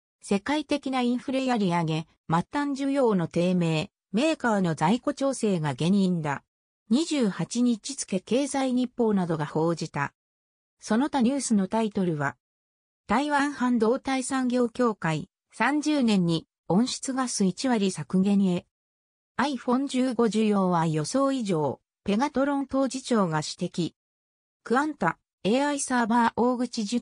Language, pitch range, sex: Japanese, 175-260 Hz, female